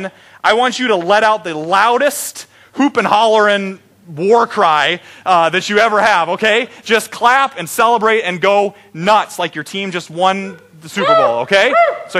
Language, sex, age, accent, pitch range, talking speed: English, male, 30-49, American, 195-255 Hz, 180 wpm